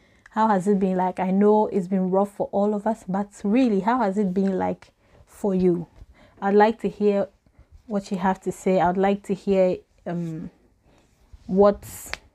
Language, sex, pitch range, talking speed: English, female, 185-215 Hz, 185 wpm